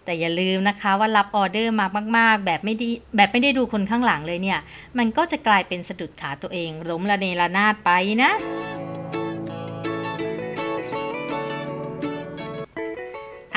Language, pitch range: Thai, 175-225 Hz